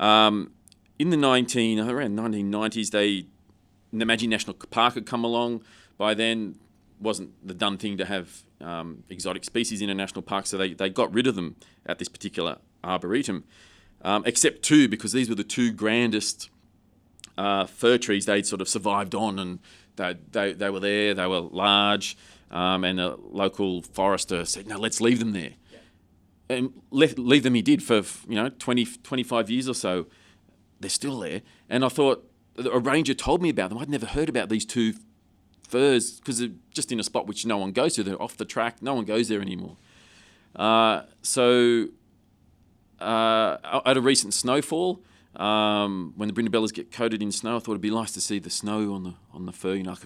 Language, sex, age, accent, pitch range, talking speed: English, male, 30-49, Australian, 95-115 Hz, 195 wpm